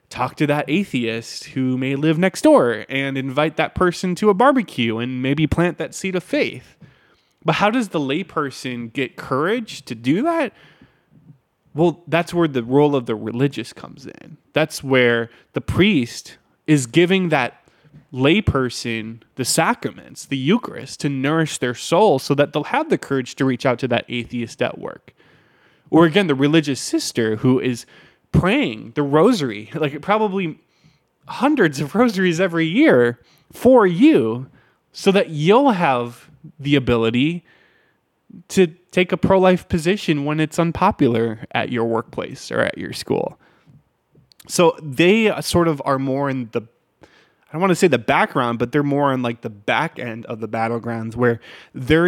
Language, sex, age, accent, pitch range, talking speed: English, male, 20-39, American, 125-175 Hz, 165 wpm